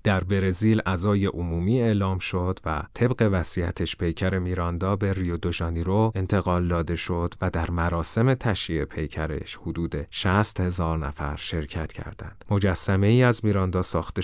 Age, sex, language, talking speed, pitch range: 30-49, male, Persian, 145 wpm, 85-105 Hz